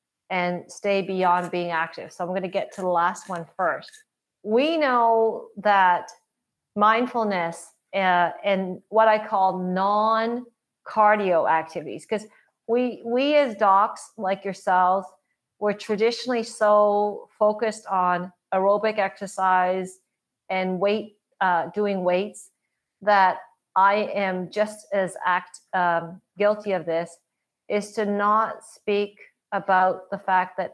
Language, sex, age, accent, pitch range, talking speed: English, female, 40-59, American, 185-220 Hz, 125 wpm